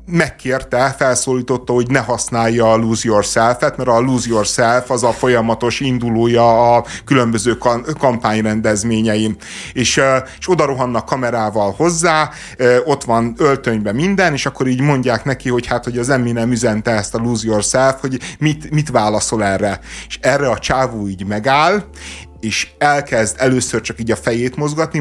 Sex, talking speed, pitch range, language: male, 160 wpm, 120-145 Hz, Hungarian